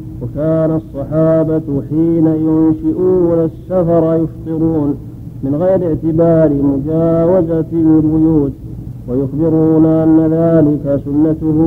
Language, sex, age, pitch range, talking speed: Arabic, male, 50-69, 155-165 Hz, 75 wpm